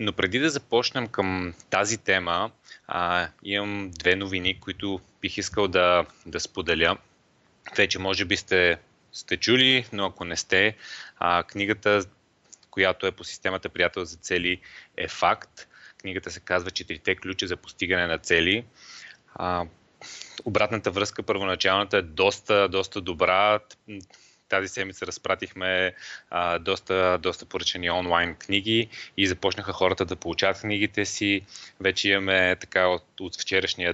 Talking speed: 135 wpm